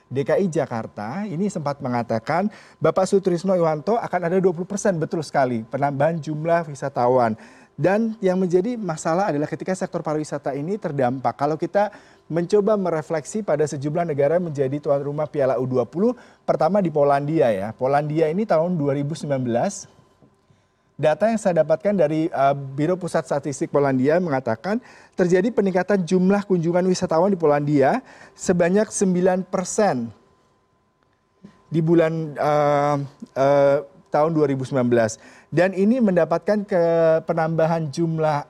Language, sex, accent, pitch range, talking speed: Indonesian, male, native, 145-185 Hz, 120 wpm